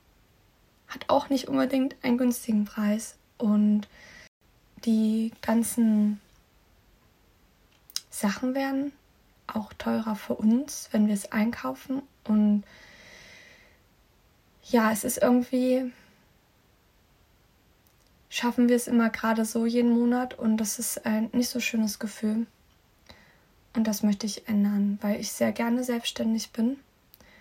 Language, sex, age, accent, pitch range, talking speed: German, female, 20-39, German, 205-230 Hz, 110 wpm